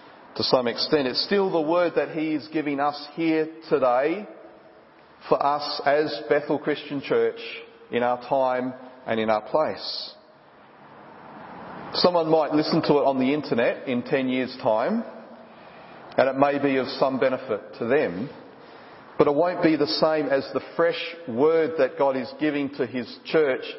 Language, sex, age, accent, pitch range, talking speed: English, male, 40-59, Australian, 125-155 Hz, 165 wpm